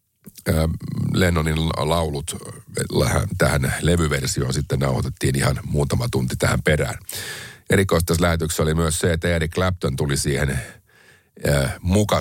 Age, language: 50-69, Finnish